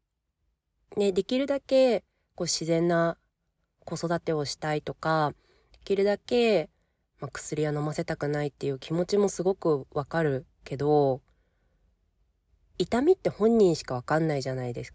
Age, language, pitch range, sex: 20-39, Japanese, 135-185 Hz, female